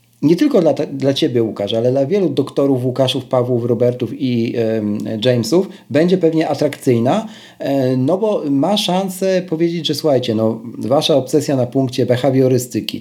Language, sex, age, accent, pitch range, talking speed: Polish, male, 40-59, native, 115-155 Hz, 145 wpm